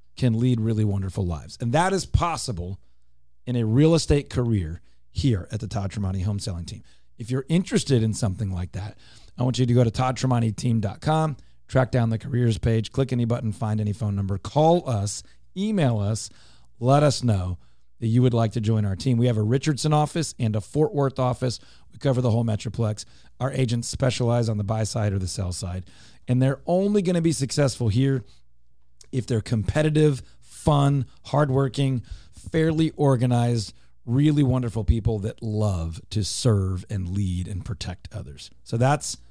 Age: 40-59